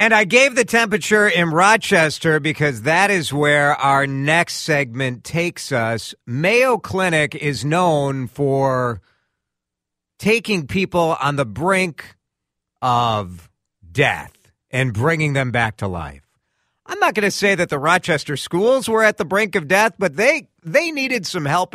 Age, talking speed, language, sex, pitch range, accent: 50-69, 150 wpm, English, male, 105-160 Hz, American